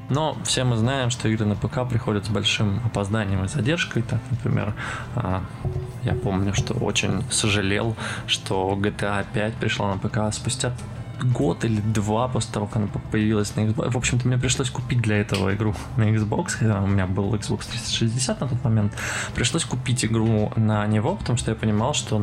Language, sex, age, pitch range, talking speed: Russian, male, 20-39, 110-125 Hz, 180 wpm